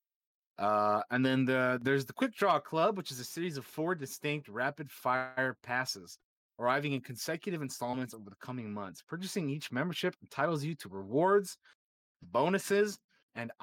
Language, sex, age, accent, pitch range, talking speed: English, male, 30-49, American, 115-150 Hz, 155 wpm